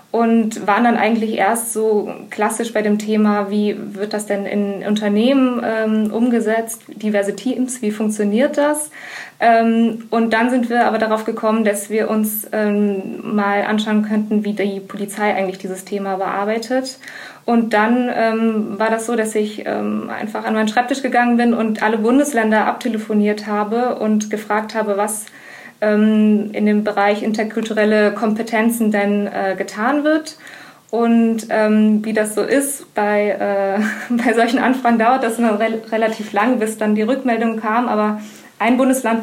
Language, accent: German, German